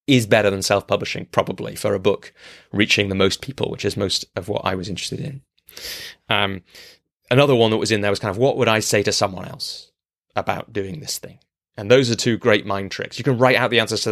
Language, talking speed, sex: English, 240 wpm, male